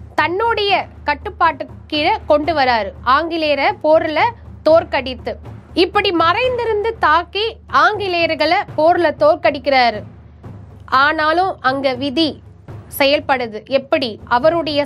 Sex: female